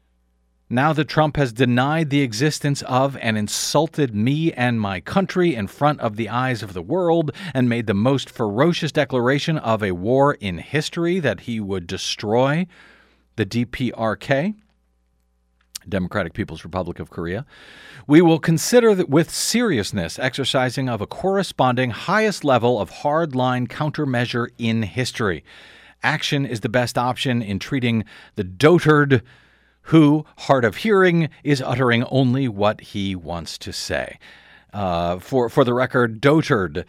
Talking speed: 145 wpm